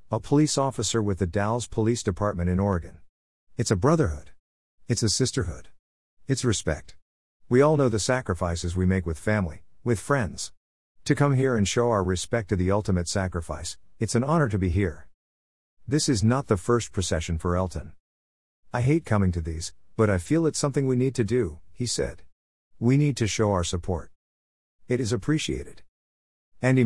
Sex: male